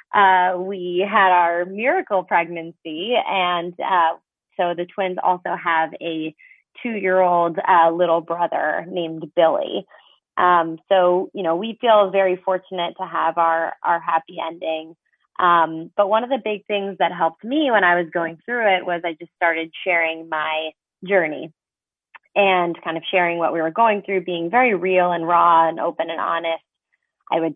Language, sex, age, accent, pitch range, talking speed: English, female, 20-39, American, 165-195 Hz, 170 wpm